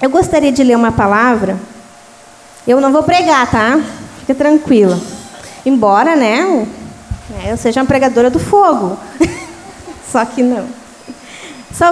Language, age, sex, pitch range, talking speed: Portuguese, 20-39, female, 240-325 Hz, 125 wpm